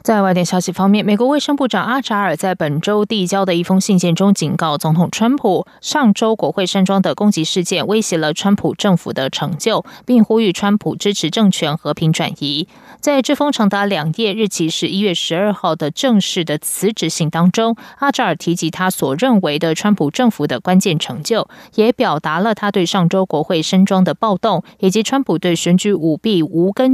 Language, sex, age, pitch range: Chinese, female, 20-39, 165-210 Hz